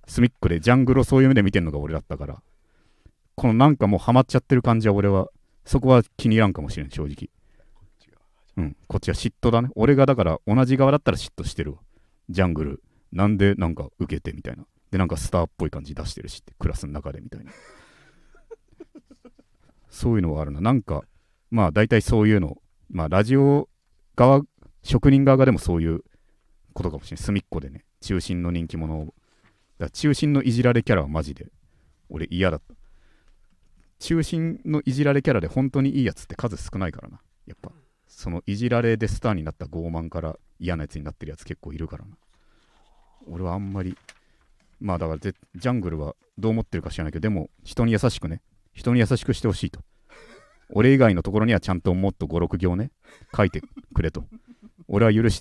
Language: Japanese